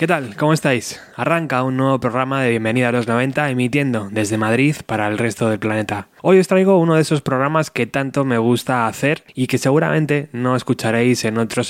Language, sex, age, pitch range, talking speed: Spanish, male, 20-39, 120-150 Hz, 205 wpm